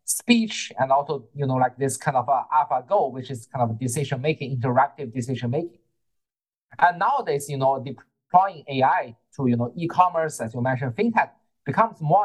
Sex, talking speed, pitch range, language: male, 180 wpm, 130-160 Hz, English